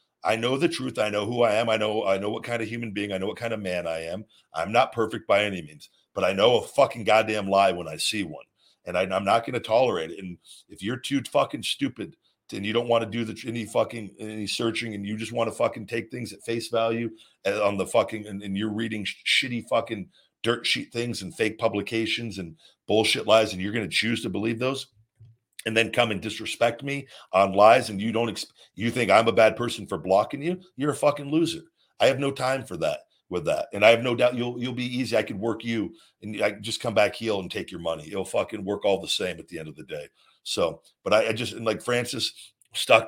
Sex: male